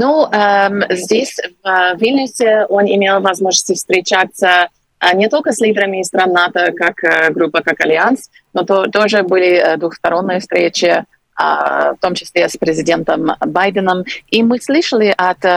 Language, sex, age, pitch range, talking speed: Russian, female, 30-49, 180-215 Hz, 125 wpm